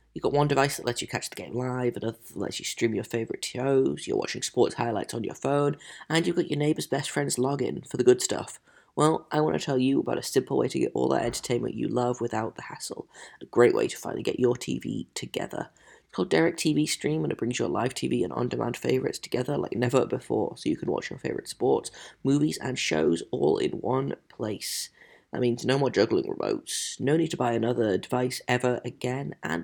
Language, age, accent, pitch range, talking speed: English, 30-49, British, 120-145 Hz, 230 wpm